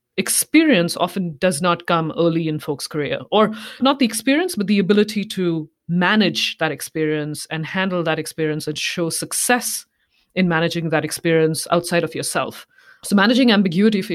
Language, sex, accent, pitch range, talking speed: English, female, Indian, 160-200 Hz, 160 wpm